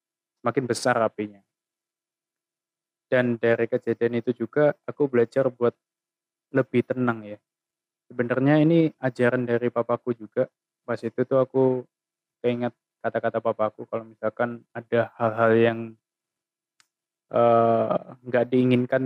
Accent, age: native, 20-39